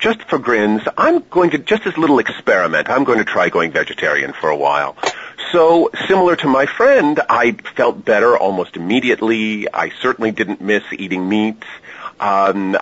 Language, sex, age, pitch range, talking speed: English, male, 40-59, 110-155 Hz, 175 wpm